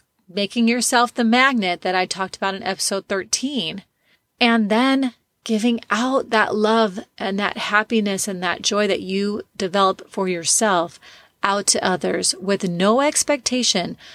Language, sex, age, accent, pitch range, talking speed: English, female, 30-49, American, 190-230 Hz, 145 wpm